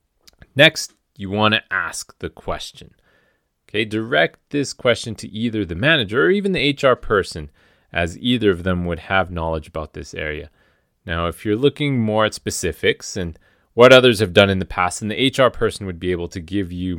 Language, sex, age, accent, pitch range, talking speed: English, male, 30-49, American, 90-135 Hz, 195 wpm